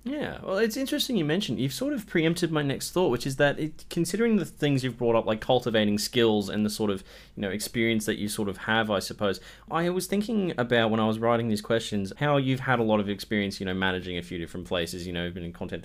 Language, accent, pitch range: English, Australian, 100-140 Hz